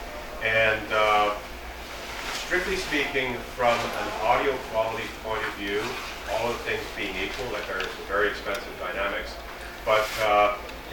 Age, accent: 40-59, American